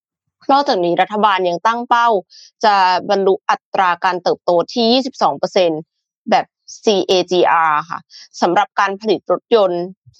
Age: 20-39